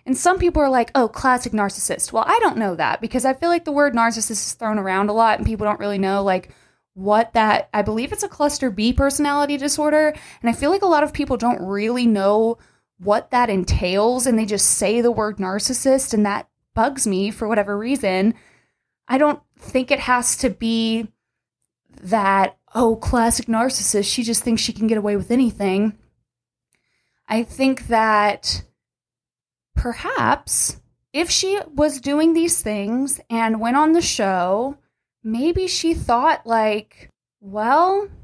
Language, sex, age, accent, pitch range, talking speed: English, female, 20-39, American, 215-295 Hz, 170 wpm